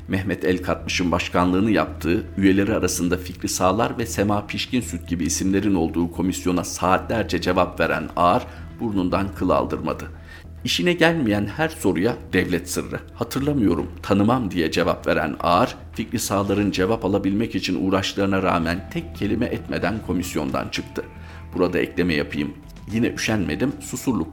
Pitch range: 85-100 Hz